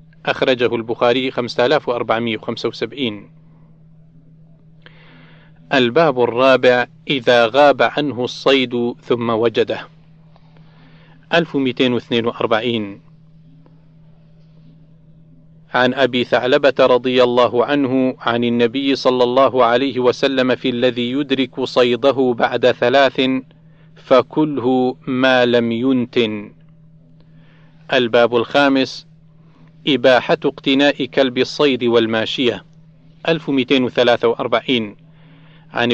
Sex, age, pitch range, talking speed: male, 40-59, 120-155 Hz, 80 wpm